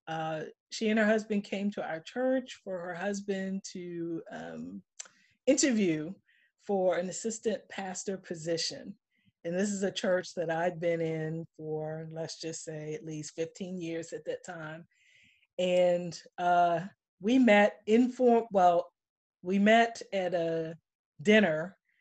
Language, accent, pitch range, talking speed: English, American, 170-215 Hz, 140 wpm